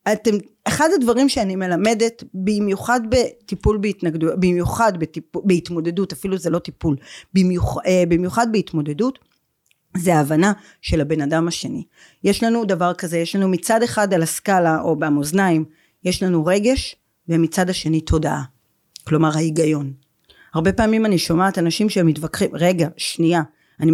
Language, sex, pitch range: Hebrew, female, 170-245 Hz